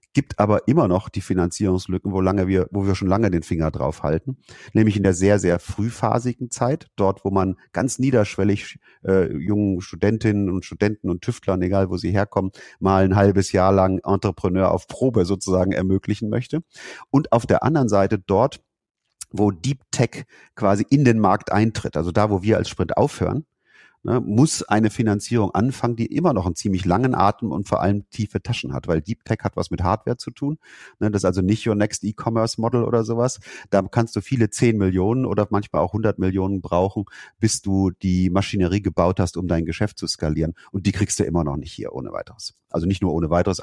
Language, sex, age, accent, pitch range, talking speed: German, male, 40-59, German, 95-110 Hz, 200 wpm